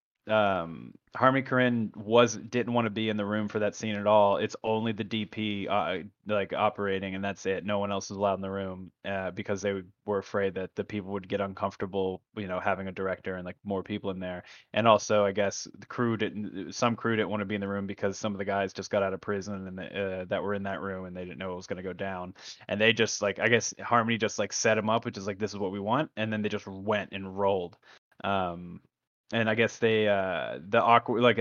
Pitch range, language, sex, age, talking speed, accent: 95-110 Hz, English, male, 20-39, 260 wpm, American